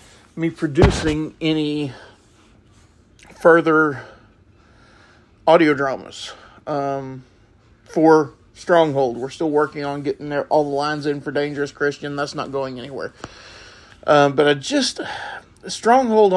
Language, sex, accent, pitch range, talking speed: English, male, American, 110-160 Hz, 115 wpm